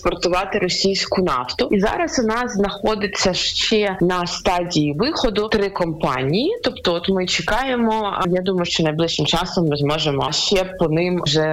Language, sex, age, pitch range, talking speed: Ukrainian, female, 20-39, 170-220 Hz, 145 wpm